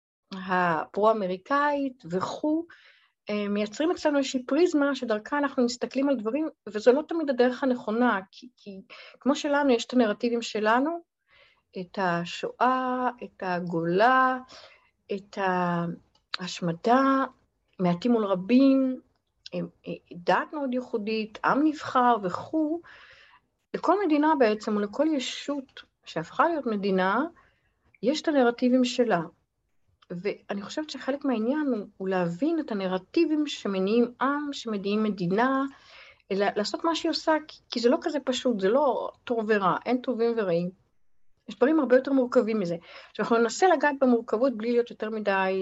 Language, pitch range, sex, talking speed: Hebrew, 200-275 Hz, female, 130 wpm